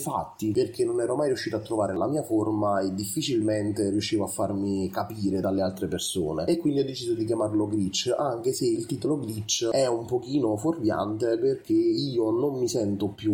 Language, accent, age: Italian, native, 30-49